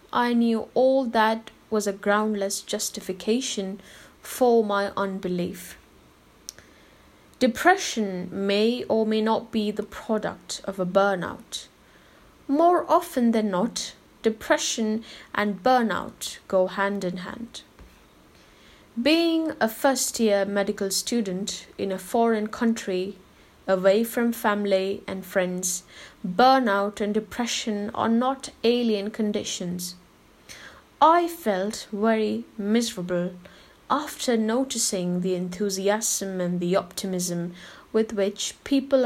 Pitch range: 195-240 Hz